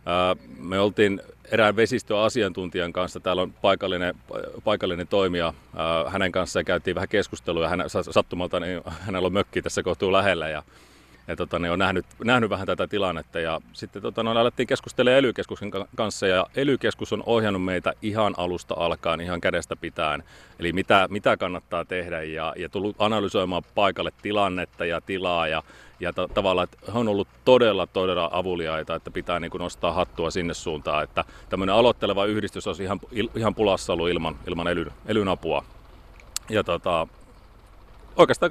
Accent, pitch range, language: native, 85-115 Hz, Finnish